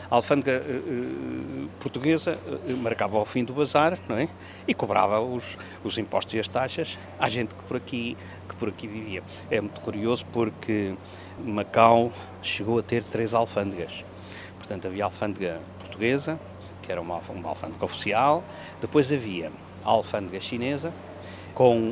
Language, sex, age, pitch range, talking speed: English, male, 50-69, 95-135 Hz, 135 wpm